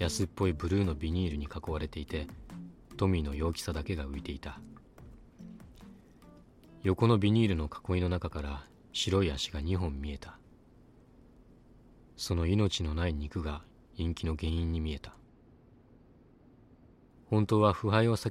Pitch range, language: 80-100 Hz, Japanese